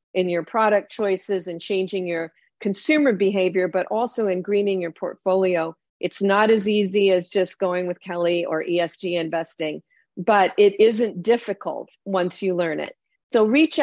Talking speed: 160 wpm